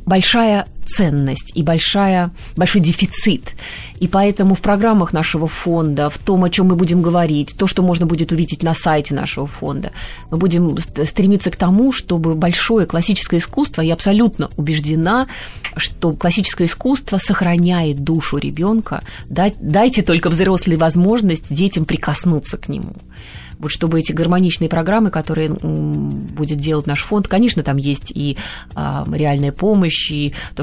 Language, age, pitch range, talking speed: Russian, 30-49, 145-185 Hz, 140 wpm